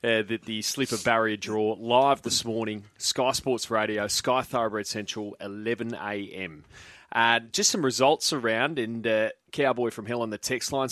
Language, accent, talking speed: English, Australian, 175 wpm